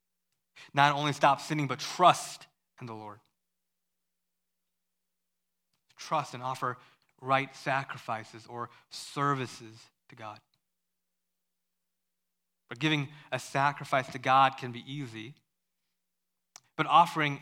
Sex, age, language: male, 20-39, English